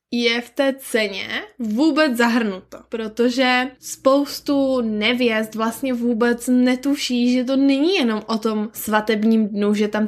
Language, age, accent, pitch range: Czech, 10-29, native, 215-250 Hz